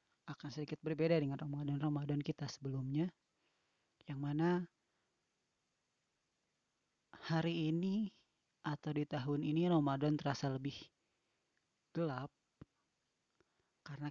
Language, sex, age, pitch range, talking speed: Malay, female, 30-49, 140-165 Hz, 85 wpm